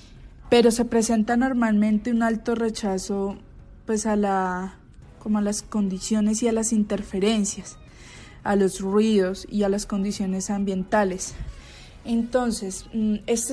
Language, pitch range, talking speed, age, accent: Spanish, 195-220 Hz, 125 wpm, 20-39, Colombian